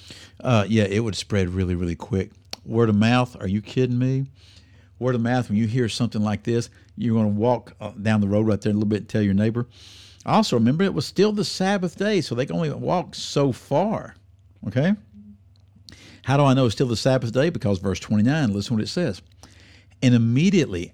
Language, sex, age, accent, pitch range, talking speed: English, male, 60-79, American, 100-140 Hz, 220 wpm